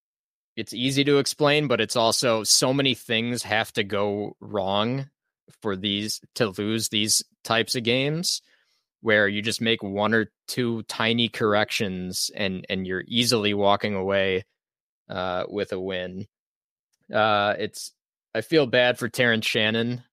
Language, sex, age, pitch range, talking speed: English, male, 20-39, 100-115 Hz, 145 wpm